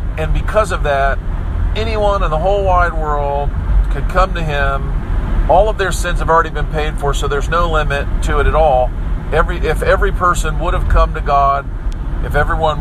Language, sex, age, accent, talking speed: English, male, 50-69, American, 195 wpm